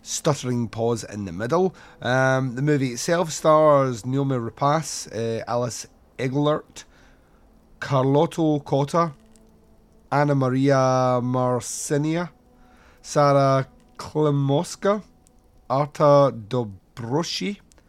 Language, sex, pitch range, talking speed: English, male, 115-150 Hz, 80 wpm